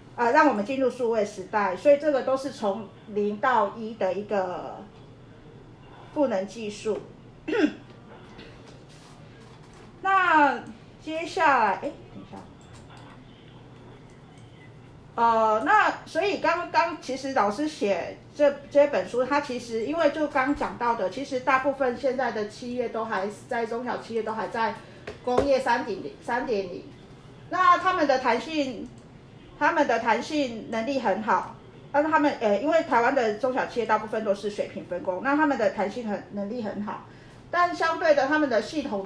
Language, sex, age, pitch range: Chinese, female, 40-59, 205-285 Hz